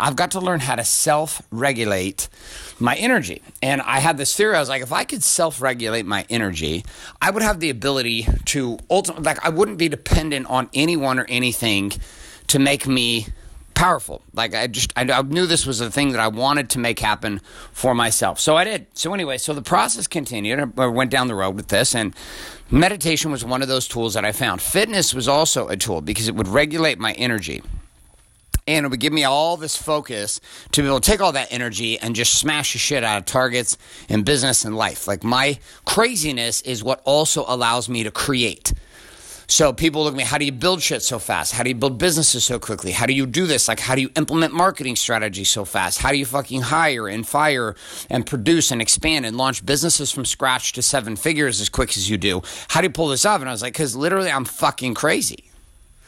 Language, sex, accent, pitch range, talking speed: English, male, American, 115-150 Hz, 220 wpm